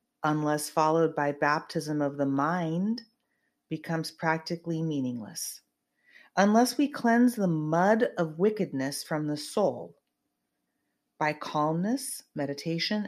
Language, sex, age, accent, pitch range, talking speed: English, female, 40-59, American, 145-210 Hz, 105 wpm